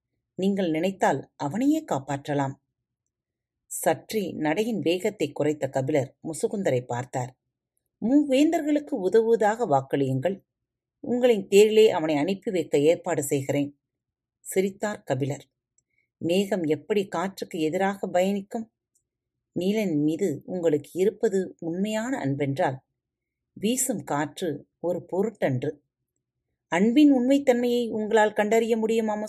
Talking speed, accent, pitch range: 90 wpm, native, 140-220 Hz